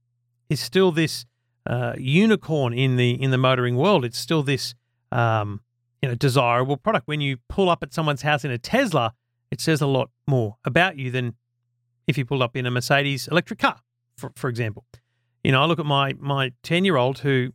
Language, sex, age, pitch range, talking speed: English, male, 40-59, 120-160 Hz, 205 wpm